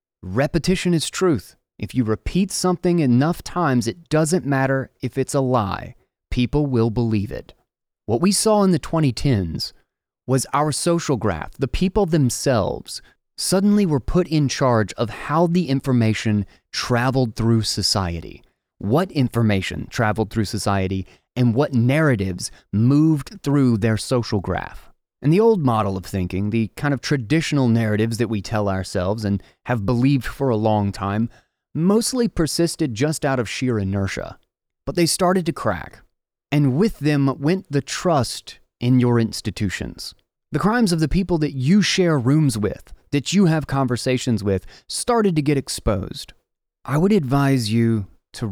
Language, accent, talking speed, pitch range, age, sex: English, American, 155 wpm, 110-155 Hz, 30-49, male